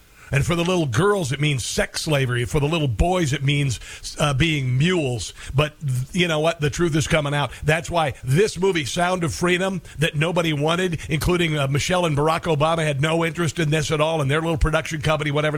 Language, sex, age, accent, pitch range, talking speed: English, male, 50-69, American, 145-180 Hz, 215 wpm